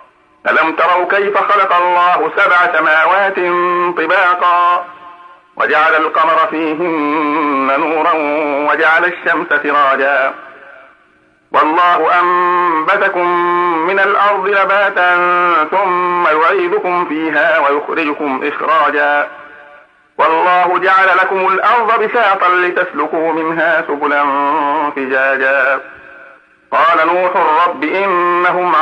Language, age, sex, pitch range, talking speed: Arabic, 50-69, male, 145-180 Hz, 80 wpm